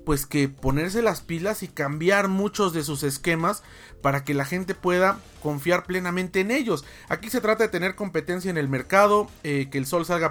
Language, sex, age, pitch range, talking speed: Spanish, male, 40-59, 140-180 Hz, 200 wpm